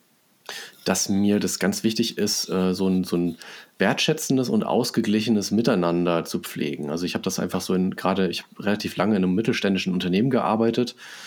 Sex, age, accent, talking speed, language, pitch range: male, 30-49, German, 170 wpm, German, 90-110 Hz